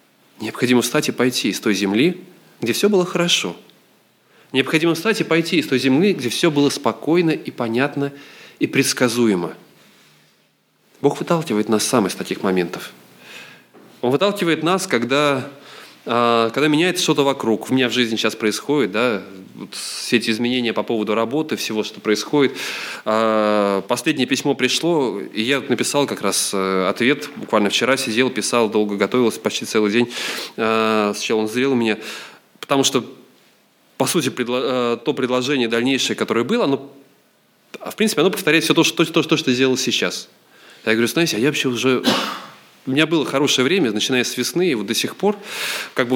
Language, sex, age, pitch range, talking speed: Russian, male, 20-39, 115-150 Hz, 165 wpm